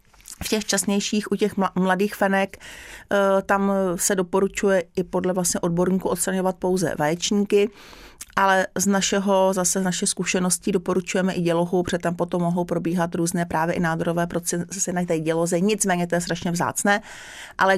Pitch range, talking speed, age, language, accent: 175-200 Hz, 155 wpm, 40-59, Czech, native